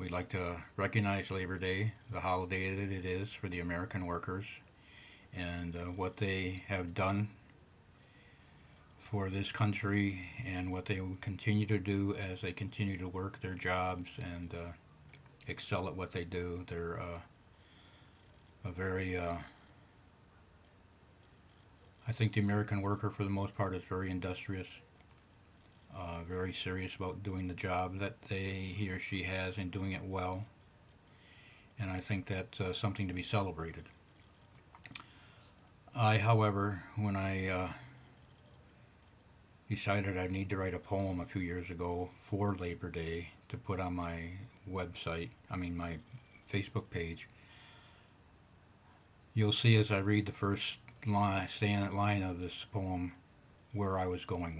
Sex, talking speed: male, 145 wpm